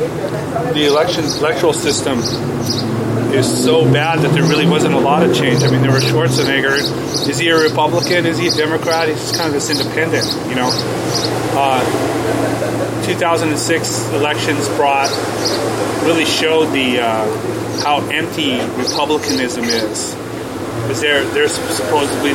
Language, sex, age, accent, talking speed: English, male, 30-49, American, 135 wpm